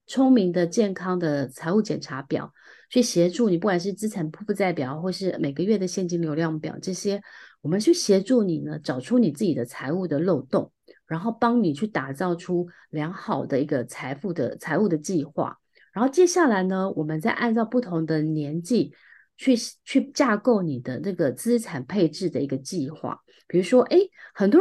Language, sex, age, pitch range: Chinese, female, 30-49, 155-230 Hz